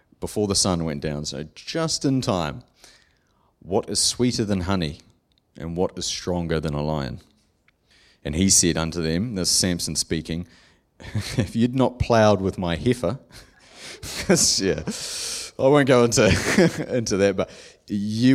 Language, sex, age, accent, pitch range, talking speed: English, male, 30-49, Australian, 80-100 Hz, 150 wpm